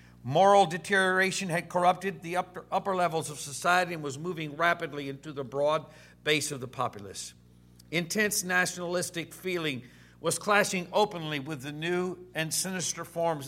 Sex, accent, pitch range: male, American, 130-175 Hz